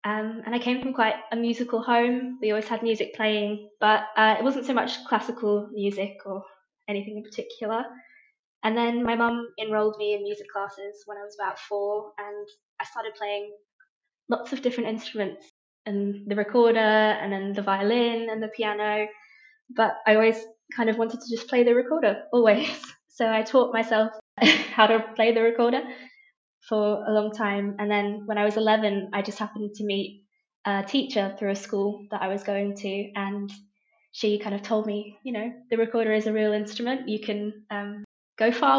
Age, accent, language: 20-39, British, English